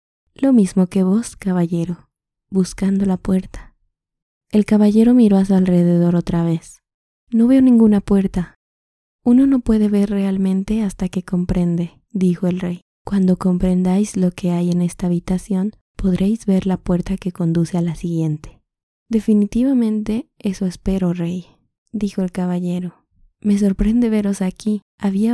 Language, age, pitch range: Spanish, 20-39, 180-210 Hz